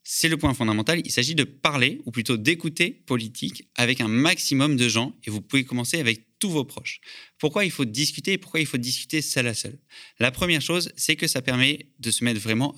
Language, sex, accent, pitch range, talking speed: French, male, French, 115-150 Hz, 225 wpm